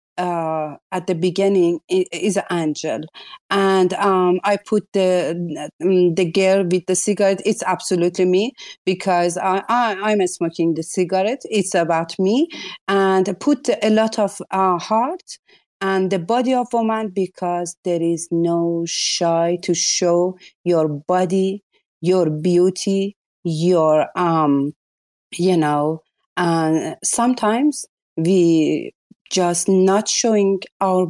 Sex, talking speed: female, 125 wpm